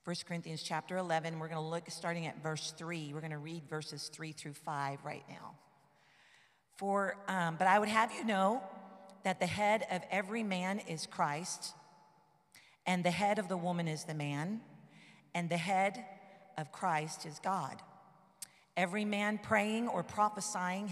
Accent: American